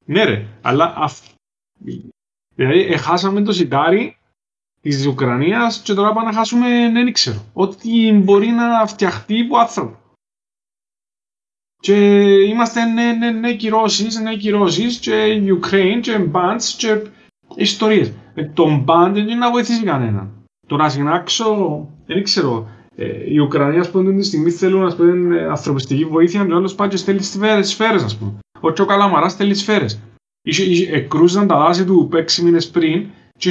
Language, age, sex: Greek, 30-49, male